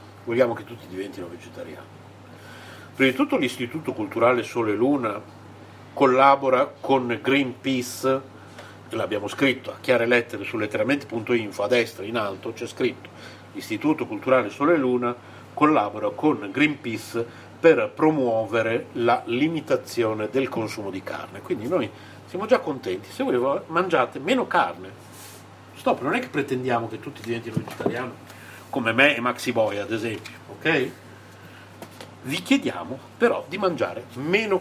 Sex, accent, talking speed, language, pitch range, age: male, native, 130 wpm, Italian, 105-130 Hz, 50-69